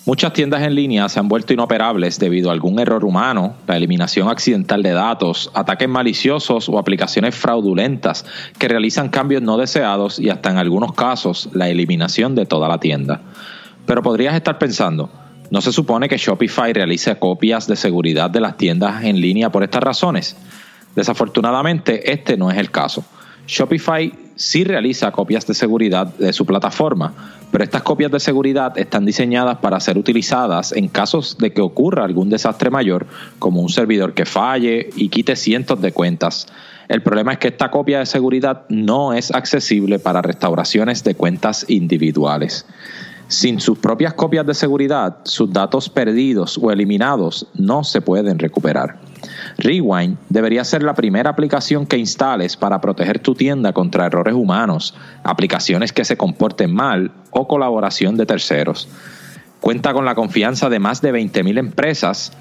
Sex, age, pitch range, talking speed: male, 30-49, 95-140 Hz, 160 wpm